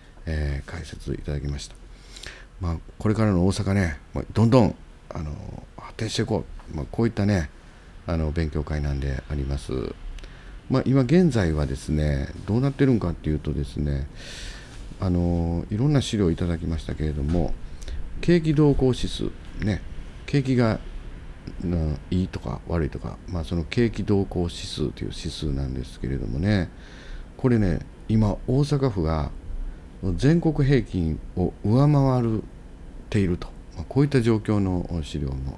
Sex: male